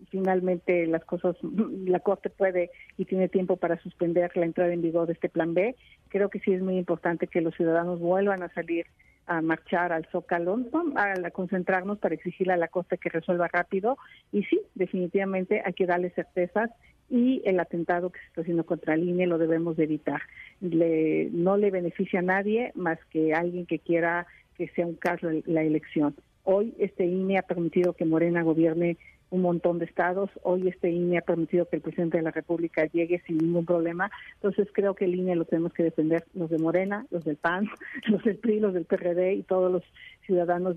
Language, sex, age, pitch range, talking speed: Spanish, female, 50-69, 170-190 Hz, 200 wpm